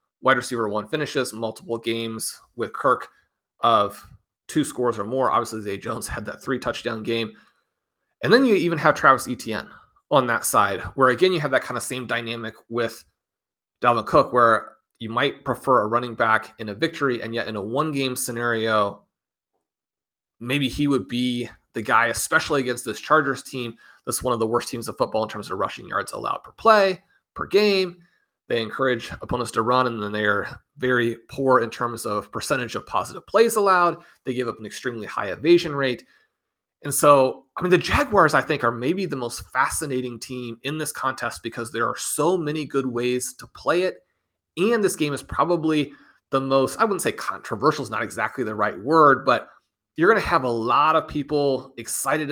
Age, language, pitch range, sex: 30-49, English, 115-145 Hz, male